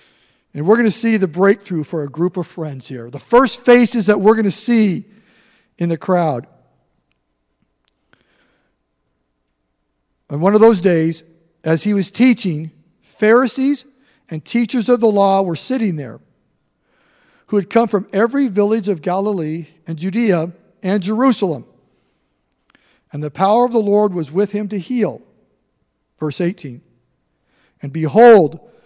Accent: American